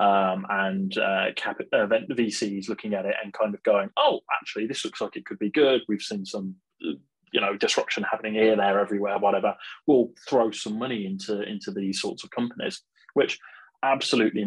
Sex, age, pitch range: male, 20-39, 100-115 Hz